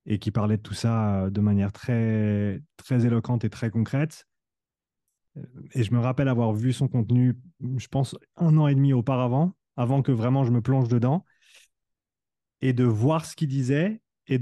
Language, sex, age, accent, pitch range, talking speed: French, male, 30-49, French, 110-135 Hz, 180 wpm